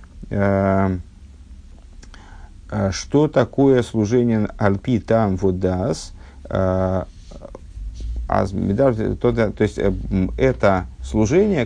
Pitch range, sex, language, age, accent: 95-125 Hz, male, Russian, 50-69, native